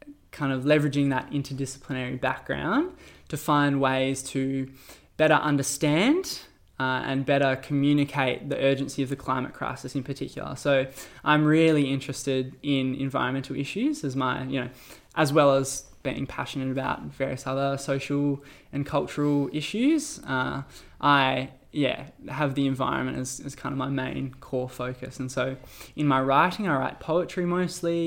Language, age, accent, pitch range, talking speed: English, 10-29, Australian, 130-150 Hz, 150 wpm